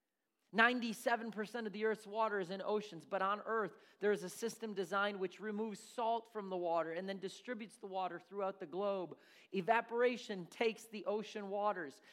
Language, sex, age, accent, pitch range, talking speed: English, male, 40-59, American, 195-230 Hz, 170 wpm